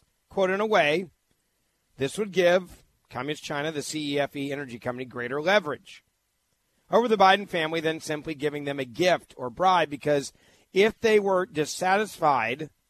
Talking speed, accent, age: 150 wpm, American, 40-59